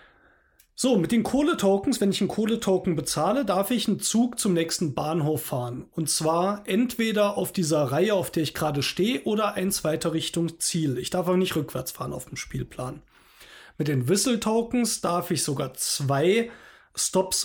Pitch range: 155-205 Hz